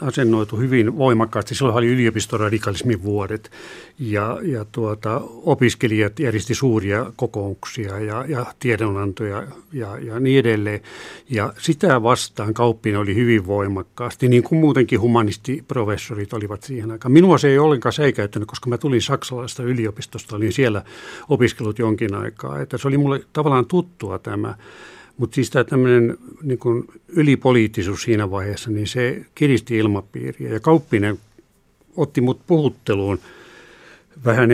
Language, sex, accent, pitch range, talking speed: Finnish, male, native, 105-130 Hz, 130 wpm